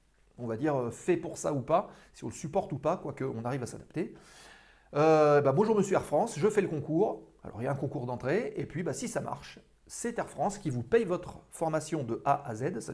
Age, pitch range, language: 40-59, 140-185 Hz, French